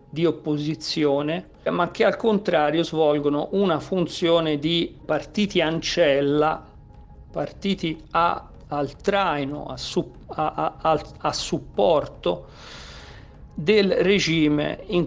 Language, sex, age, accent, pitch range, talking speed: Italian, male, 50-69, native, 145-175 Hz, 95 wpm